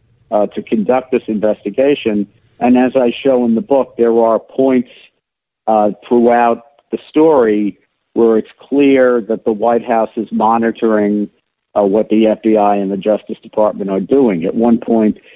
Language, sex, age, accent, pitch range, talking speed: English, male, 50-69, American, 105-115 Hz, 160 wpm